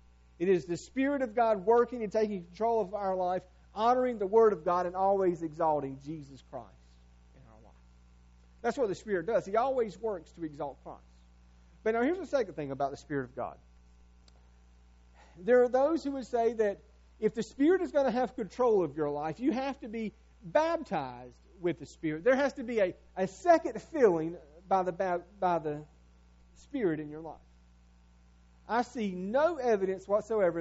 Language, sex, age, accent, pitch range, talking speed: English, male, 40-59, American, 145-230 Hz, 185 wpm